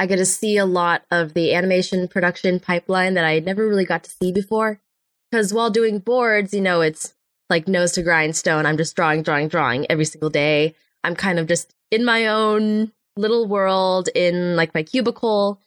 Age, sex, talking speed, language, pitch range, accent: 10-29, female, 195 wpm, English, 175-225 Hz, American